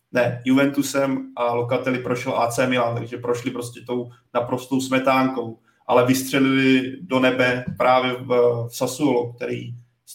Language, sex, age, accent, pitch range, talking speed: Czech, male, 30-49, native, 125-140 Hz, 135 wpm